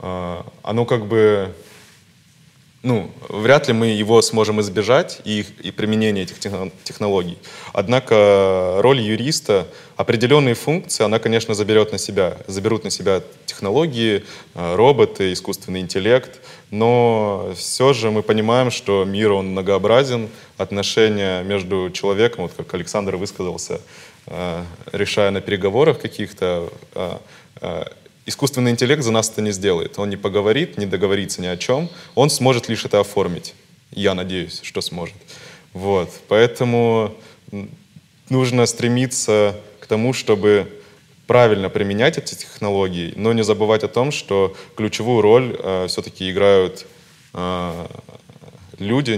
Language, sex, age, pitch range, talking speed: Russian, male, 20-39, 95-120 Hz, 120 wpm